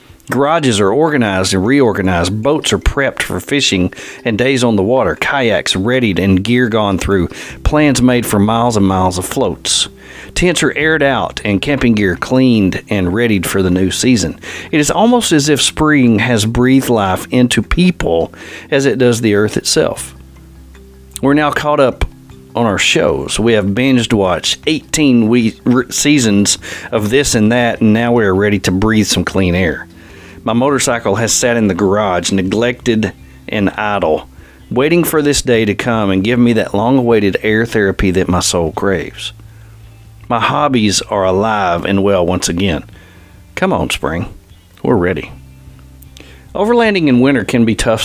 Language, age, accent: English, 40-59, American